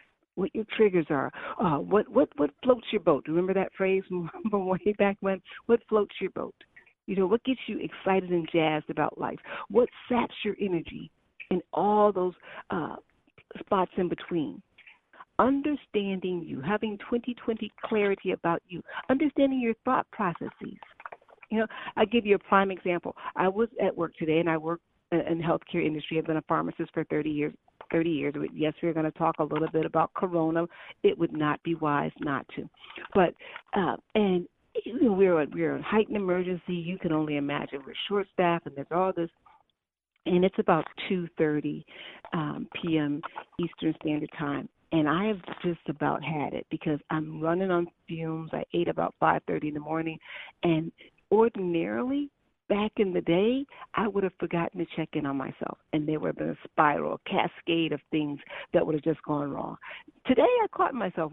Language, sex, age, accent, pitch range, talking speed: English, female, 40-59, American, 160-210 Hz, 180 wpm